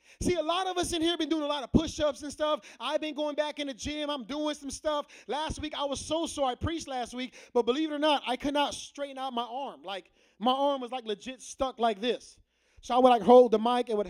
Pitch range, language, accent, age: 240-315 Hz, English, American, 20-39